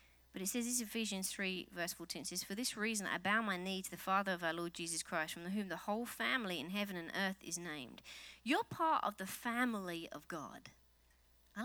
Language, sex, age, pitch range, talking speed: English, female, 30-49, 190-275 Hz, 230 wpm